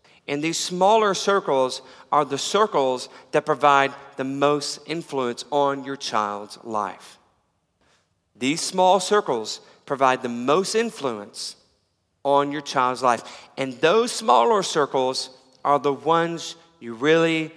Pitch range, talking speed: 135-180 Hz, 125 wpm